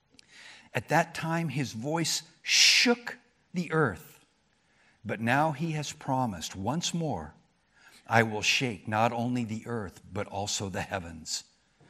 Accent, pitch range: American, 105-165 Hz